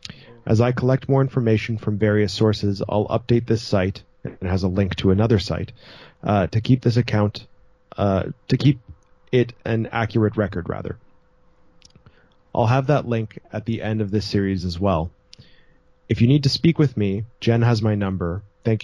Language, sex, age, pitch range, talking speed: English, male, 30-49, 100-120 Hz, 180 wpm